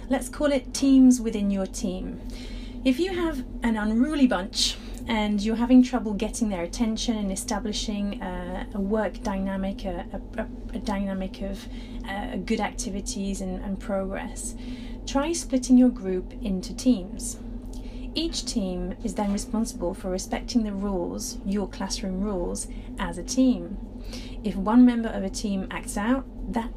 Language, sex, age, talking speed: English, female, 30-49, 150 wpm